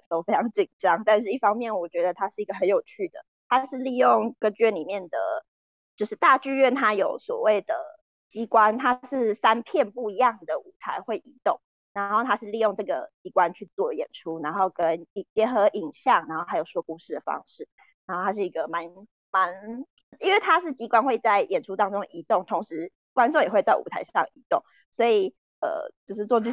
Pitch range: 195-295 Hz